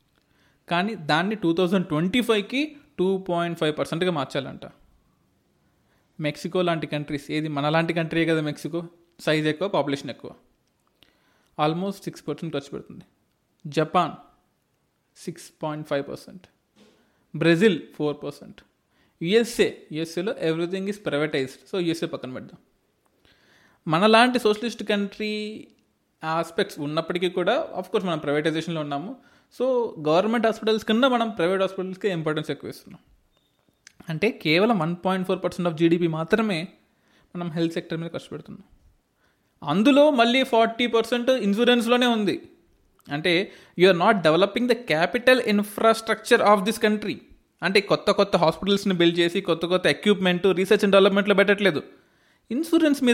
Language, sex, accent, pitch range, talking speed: English, male, Indian, 160-215 Hz, 100 wpm